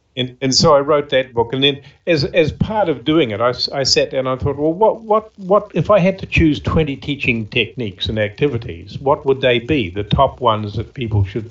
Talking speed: 240 wpm